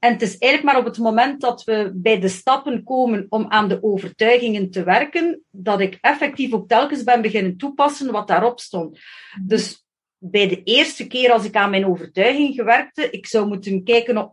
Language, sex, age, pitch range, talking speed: Dutch, female, 40-59, 205-255 Hz, 195 wpm